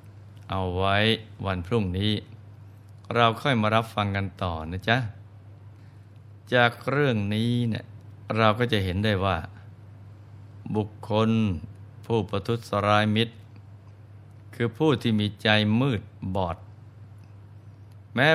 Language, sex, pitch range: Thai, male, 100-110 Hz